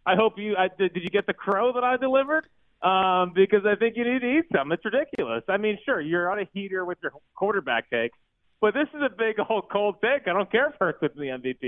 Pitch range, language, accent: 145-210 Hz, English, American